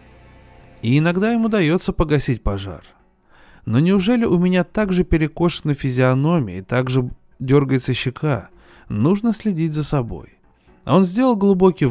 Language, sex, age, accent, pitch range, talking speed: Russian, male, 20-39, native, 125-185 Hz, 130 wpm